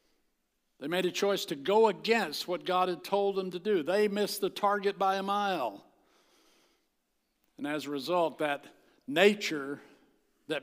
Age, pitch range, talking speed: 60-79, 150-190 Hz, 160 wpm